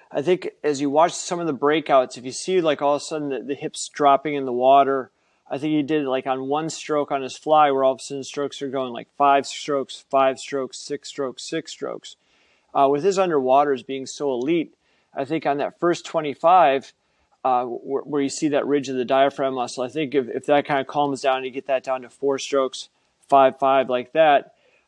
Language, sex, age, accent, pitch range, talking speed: English, male, 30-49, American, 130-150 Hz, 235 wpm